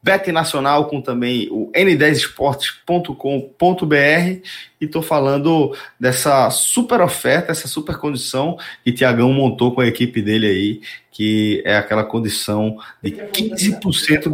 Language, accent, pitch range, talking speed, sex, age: Portuguese, Brazilian, 120-165 Hz, 120 wpm, male, 20-39